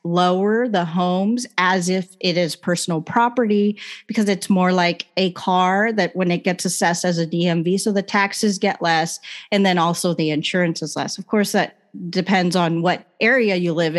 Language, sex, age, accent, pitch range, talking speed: English, female, 30-49, American, 180-230 Hz, 190 wpm